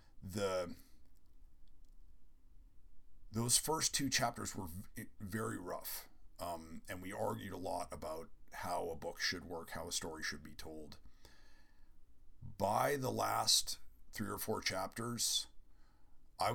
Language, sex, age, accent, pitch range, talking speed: English, male, 50-69, American, 75-105 Hz, 125 wpm